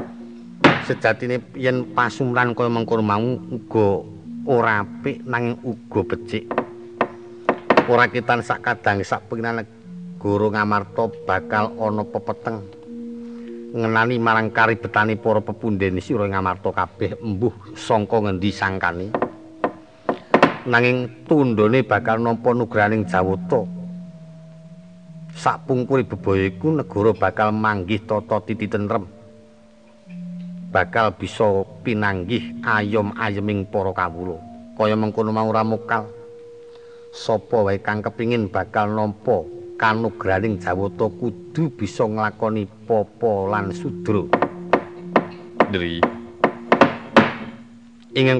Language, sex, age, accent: Indonesian, male, 50-69, native